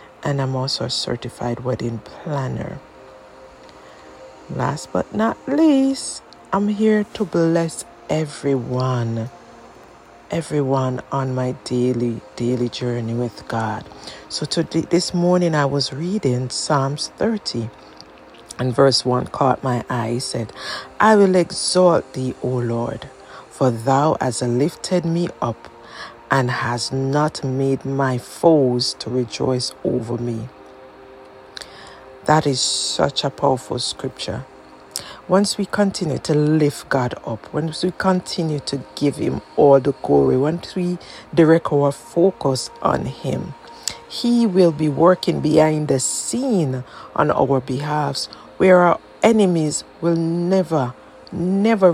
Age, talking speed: 60-79, 125 wpm